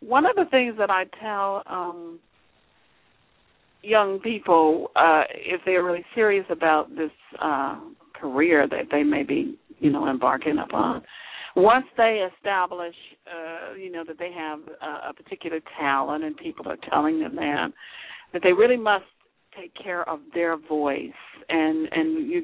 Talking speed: 155 wpm